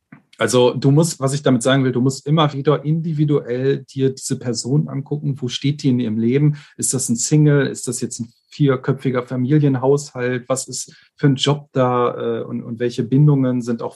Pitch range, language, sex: 125-155 Hz, German, male